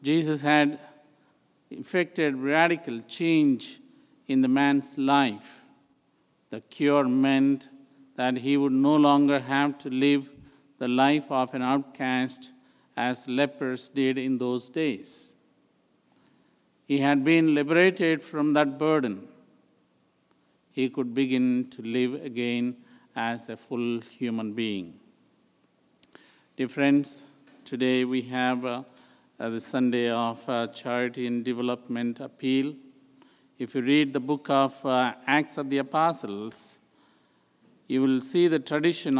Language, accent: English, Indian